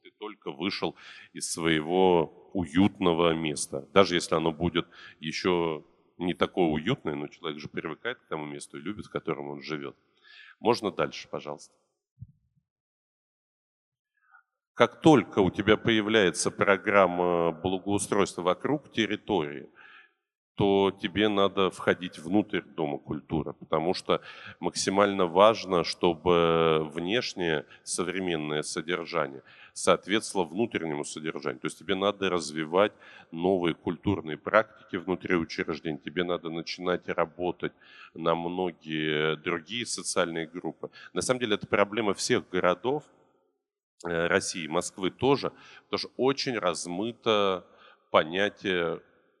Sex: male